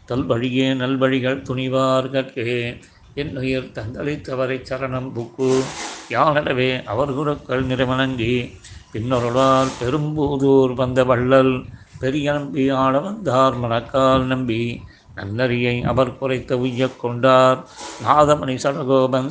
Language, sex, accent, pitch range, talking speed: Tamil, male, native, 125-135 Hz, 85 wpm